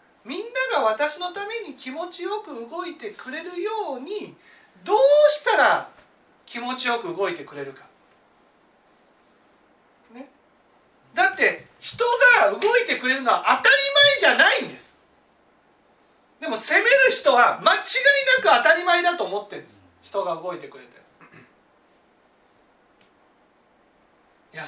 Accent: native